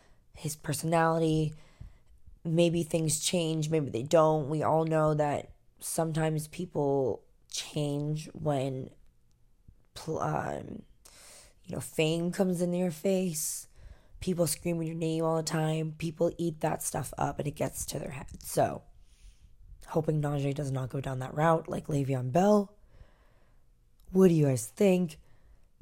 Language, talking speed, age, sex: English, 140 wpm, 20-39, female